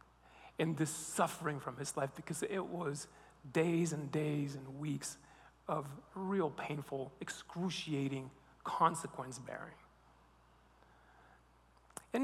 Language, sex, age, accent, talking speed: English, male, 40-59, American, 105 wpm